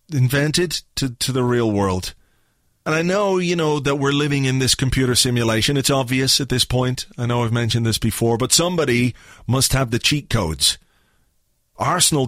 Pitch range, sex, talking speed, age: 115-140 Hz, male, 180 wpm, 40-59